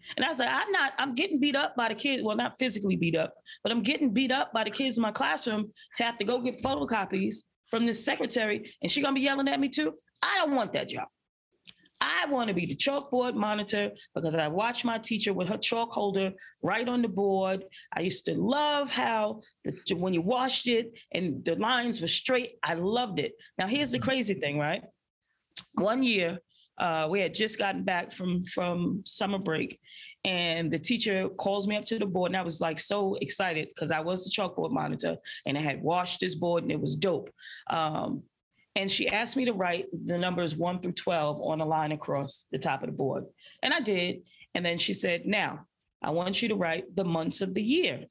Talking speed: 220 wpm